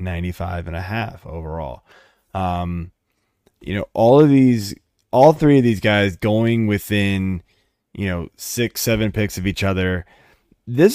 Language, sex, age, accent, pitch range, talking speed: English, male, 20-39, American, 90-120 Hz, 150 wpm